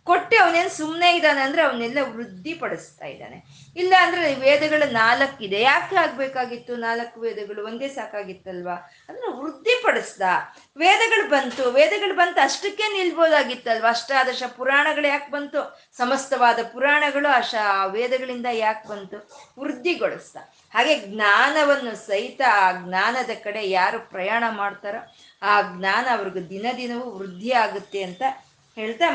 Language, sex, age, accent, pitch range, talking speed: Kannada, female, 20-39, native, 205-290 Hz, 110 wpm